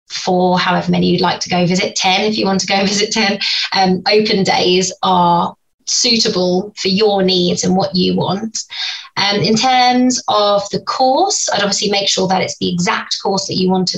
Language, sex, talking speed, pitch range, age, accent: English, female, 200 wpm, 180-210 Hz, 20-39, British